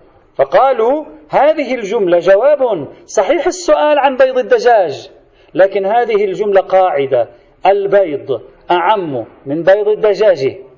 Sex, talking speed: male, 100 wpm